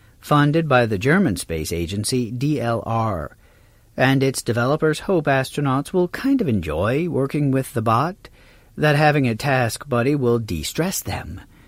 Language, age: English, 50-69